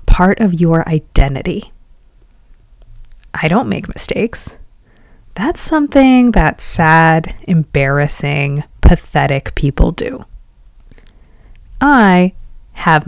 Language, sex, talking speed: English, female, 80 wpm